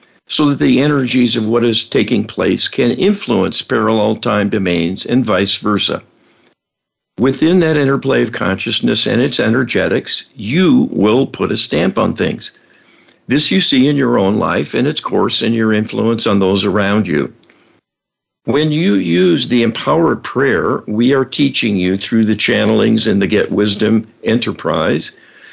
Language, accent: English, American